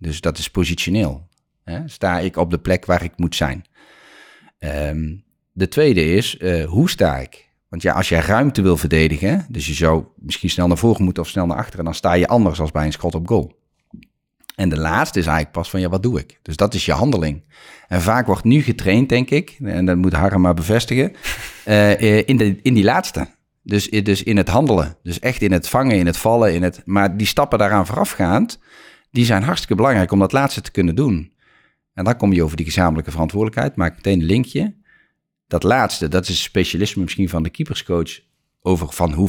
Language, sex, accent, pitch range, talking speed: Dutch, male, Dutch, 85-110 Hz, 215 wpm